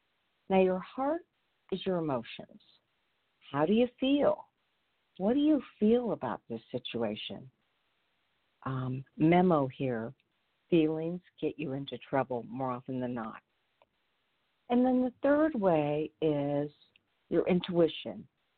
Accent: American